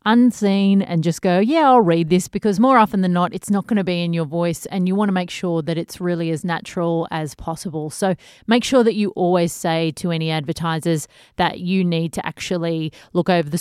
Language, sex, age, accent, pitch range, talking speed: English, female, 30-49, Australian, 170-205 Hz, 230 wpm